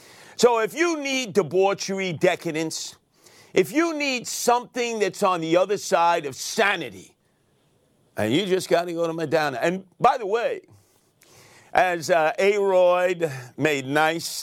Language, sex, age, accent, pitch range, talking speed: English, male, 50-69, American, 145-200 Hz, 140 wpm